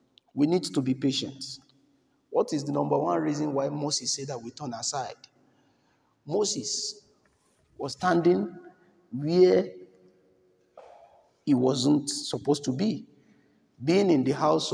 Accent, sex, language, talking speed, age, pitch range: Nigerian, male, English, 125 wpm, 50-69, 130-155 Hz